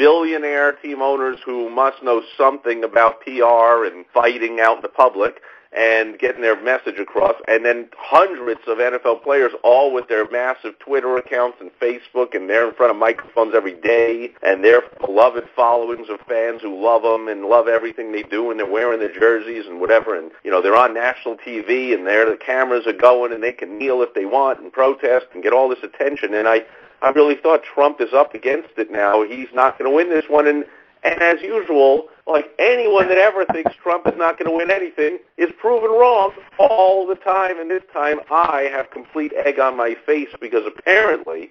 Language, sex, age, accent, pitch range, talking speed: English, male, 50-69, American, 115-170 Hz, 205 wpm